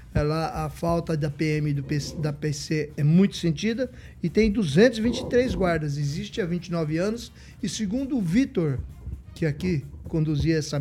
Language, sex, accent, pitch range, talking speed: Portuguese, male, Brazilian, 155-210 Hz, 145 wpm